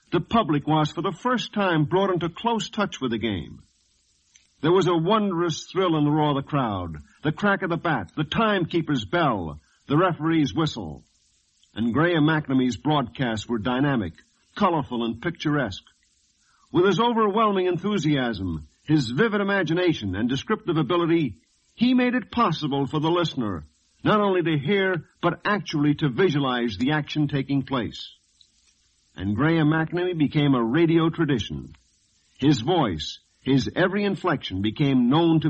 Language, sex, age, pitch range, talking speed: English, male, 50-69, 115-175 Hz, 150 wpm